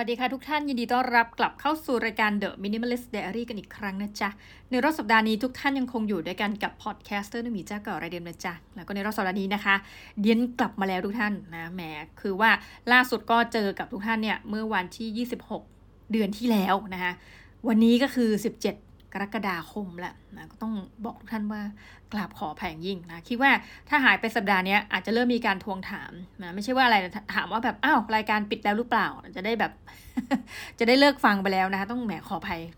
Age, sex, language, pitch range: 20-39, female, Thai, 195-240 Hz